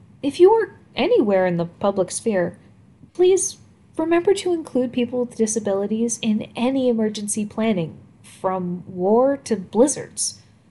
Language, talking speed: English, 130 wpm